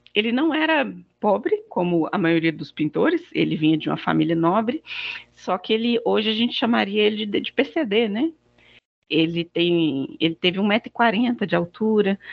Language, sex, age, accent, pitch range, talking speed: Portuguese, female, 40-59, Brazilian, 170-235 Hz, 160 wpm